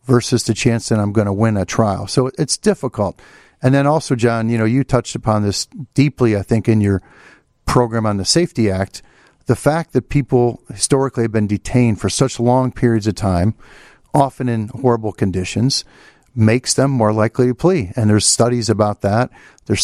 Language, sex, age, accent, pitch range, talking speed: English, male, 50-69, American, 105-125 Hz, 190 wpm